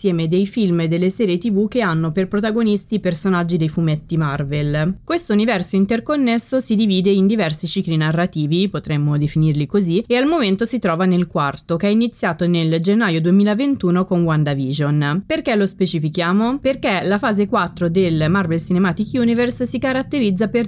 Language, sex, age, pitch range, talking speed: Italian, female, 20-39, 165-220 Hz, 165 wpm